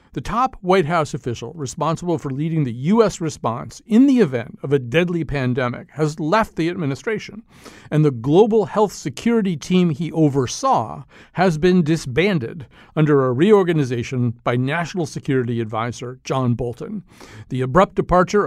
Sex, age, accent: male, 50-69, American